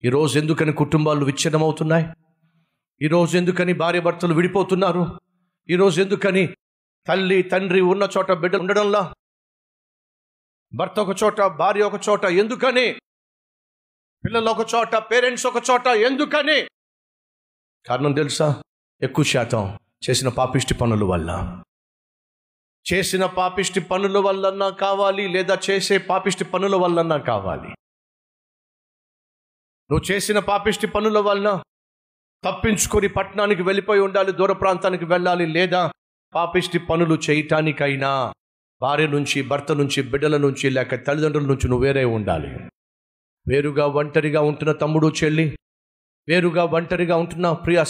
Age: 50-69